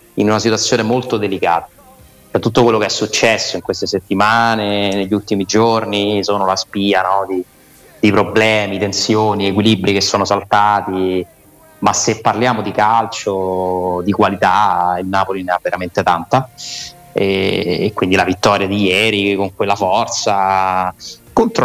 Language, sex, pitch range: Italian, male, 95-110 Hz